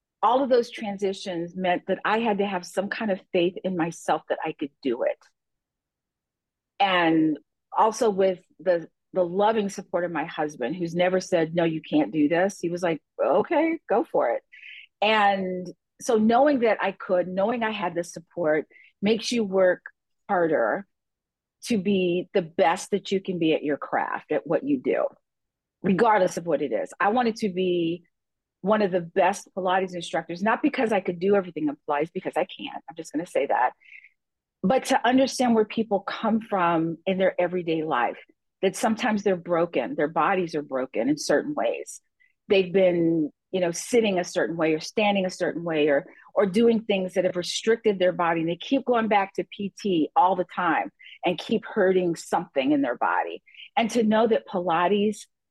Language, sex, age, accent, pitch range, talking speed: English, female, 40-59, American, 175-220 Hz, 190 wpm